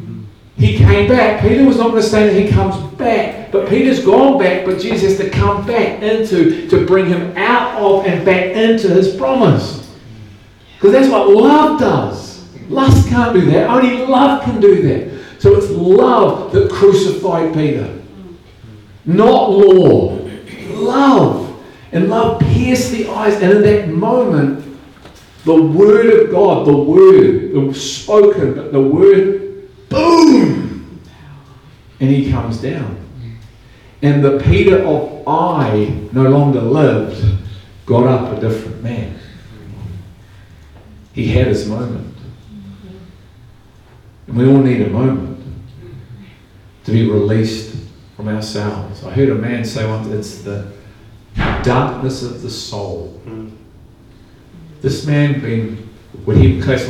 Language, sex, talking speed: English, male, 135 wpm